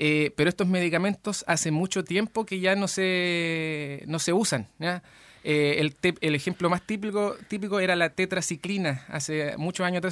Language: Spanish